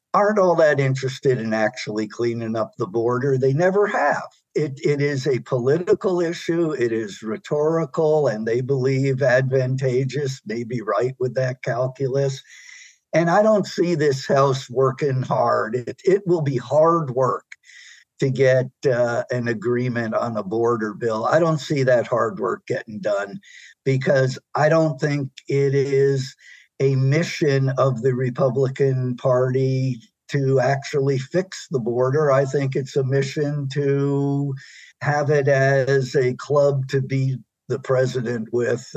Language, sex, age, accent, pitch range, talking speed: English, male, 60-79, American, 130-155 Hz, 150 wpm